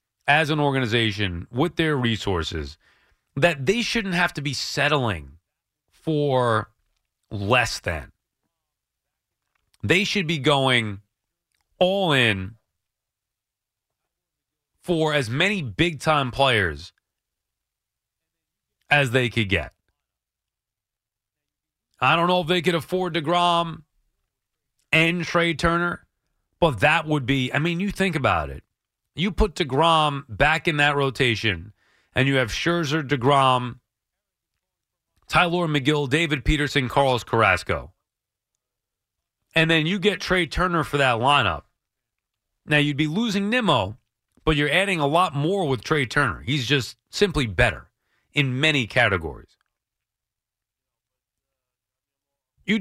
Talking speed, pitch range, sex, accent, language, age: 115 wpm, 110-170 Hz, male, American, English, 30-49